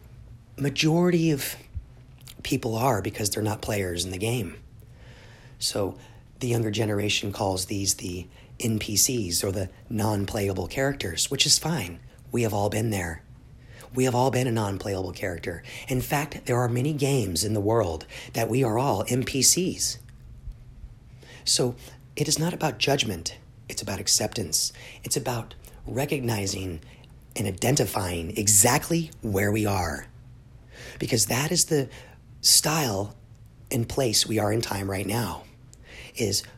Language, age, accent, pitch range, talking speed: English, 40-59, American, 105-125 Hz, 140 wpm